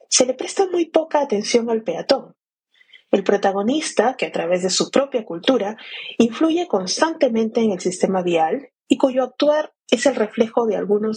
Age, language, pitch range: 30-49, Spanish, 195-265 Hz